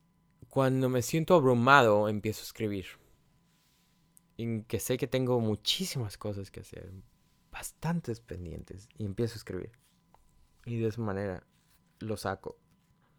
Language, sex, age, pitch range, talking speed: Spanish, male, 20-39, 95-160 Hz, 125 wpm